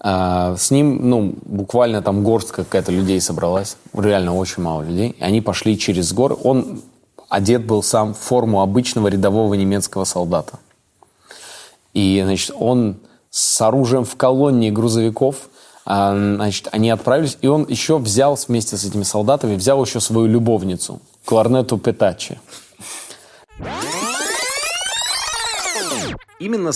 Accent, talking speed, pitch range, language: native, 120 wpm, 95-120 Hz, Russian